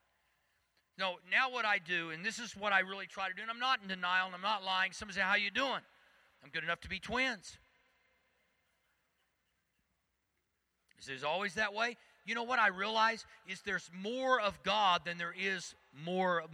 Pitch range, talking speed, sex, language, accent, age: 180-225 Hz, 195 wpm, male, English, American, 40-59